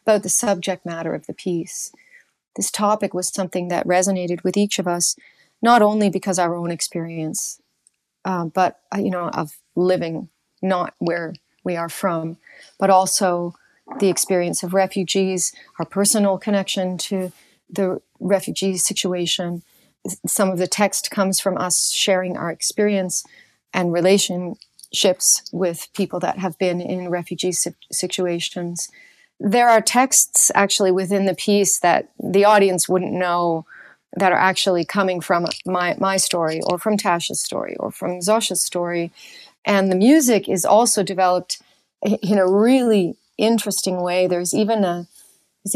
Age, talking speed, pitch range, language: 40-59, 145 wpm, 180-210 Hz, English